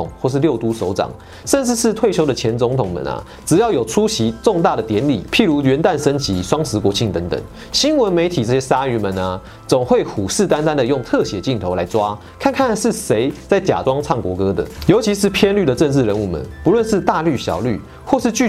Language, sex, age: Chinese, male, 30-49